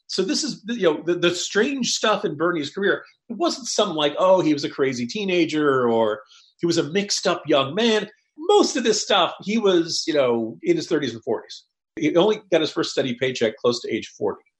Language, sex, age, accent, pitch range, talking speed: English, male, 40-59, American, 125-210 Hz, 220 wpm